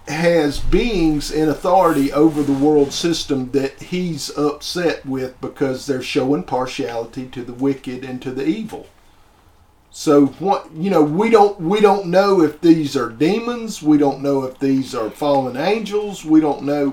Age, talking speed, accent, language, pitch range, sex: 50-69, 165 wpm, American, English, 135-170 Hz, male